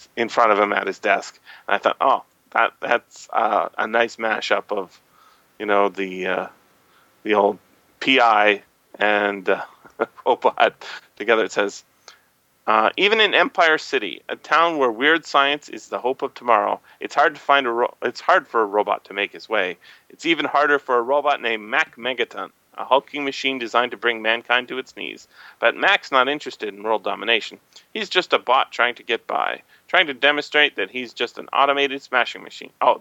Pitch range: 120-155 Hz